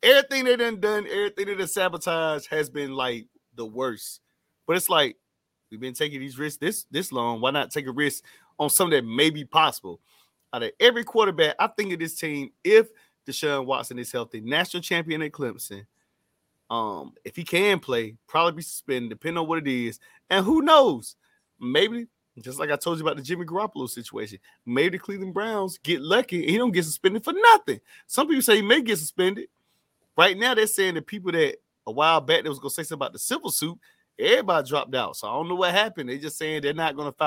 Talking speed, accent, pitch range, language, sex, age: 220 wpm, American, 145-215 Hz, English, male, 30-49